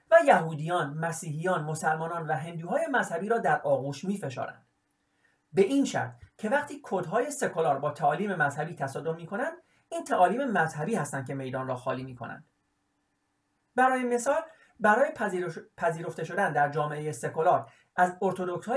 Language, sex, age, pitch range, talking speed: Persian, male, 40-59, 150-230 Hz, 145 wpm